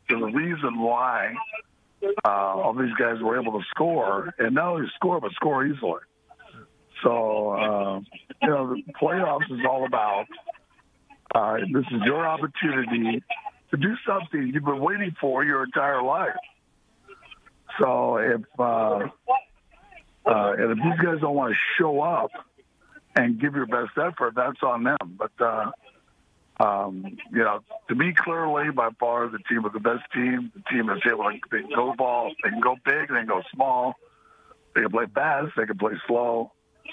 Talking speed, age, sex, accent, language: 170 wpm, 60-79, male, American, English